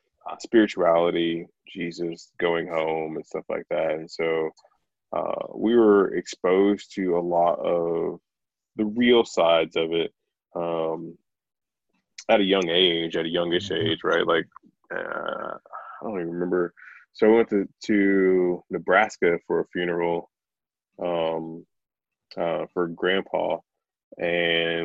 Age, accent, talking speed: 20-39, American, 135 wpm